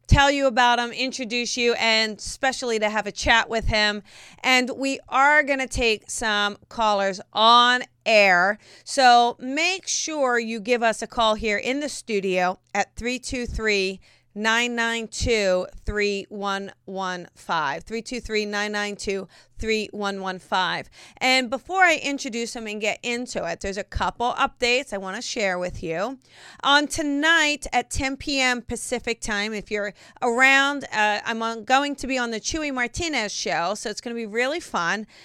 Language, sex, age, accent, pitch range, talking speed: English, female, 40-59, American, 205-255 Hz, 145 wpm